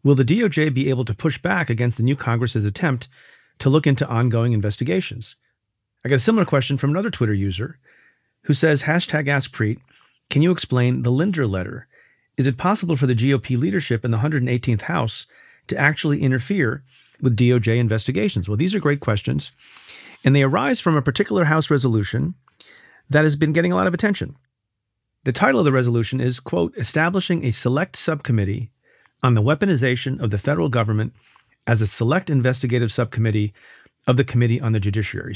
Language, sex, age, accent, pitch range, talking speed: English, male, 40-59, American, 115-145 Hz, 175 wpm